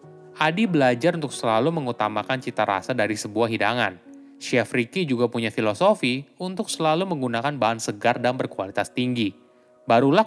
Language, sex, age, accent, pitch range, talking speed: Indonesian, male, 20-39, native, 120-160 Hz, 140 wpm